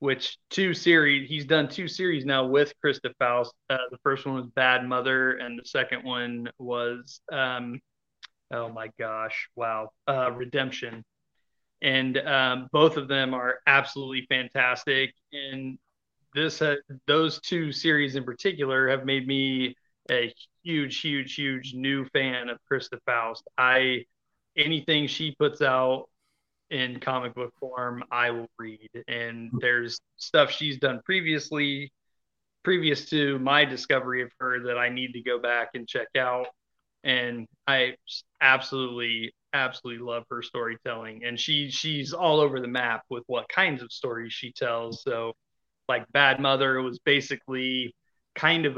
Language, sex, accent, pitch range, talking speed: English, male, American, 125-140 Hz, 150 wpm